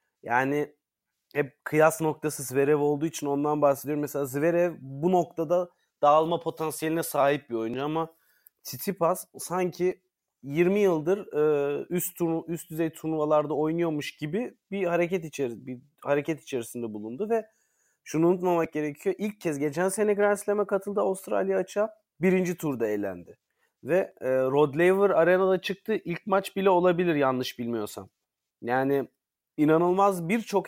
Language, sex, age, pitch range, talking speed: Turkish, male, 30-49, 140-175 Hz, 130 wpm